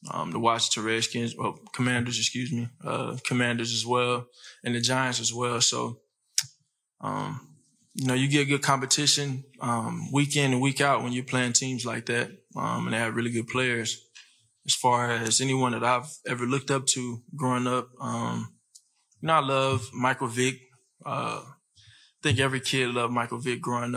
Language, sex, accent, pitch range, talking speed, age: English, male, American, 115-130 Hz, 180 wpm, 20-39